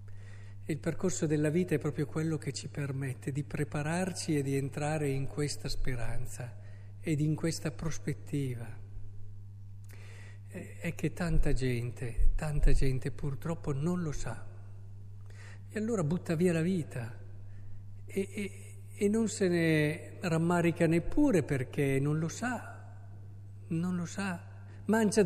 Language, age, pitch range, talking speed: Italian, 50-69, 100-165 Hz, 130 wpm